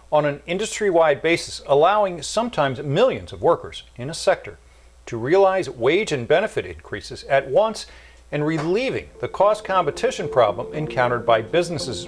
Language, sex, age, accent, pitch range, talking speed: English, male, 40-59, American, 90-145 Hz, 140 wpm